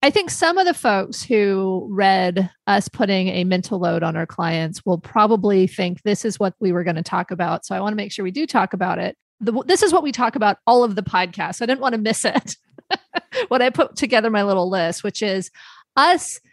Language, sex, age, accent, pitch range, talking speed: English, female, 30-49, American, 190-240 Hz, 235 wpm